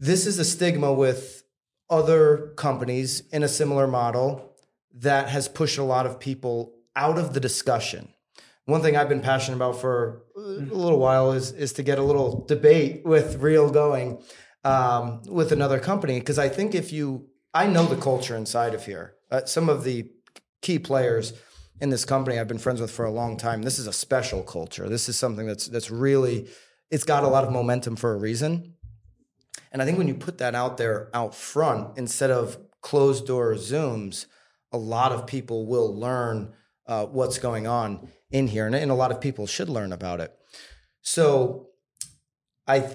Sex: male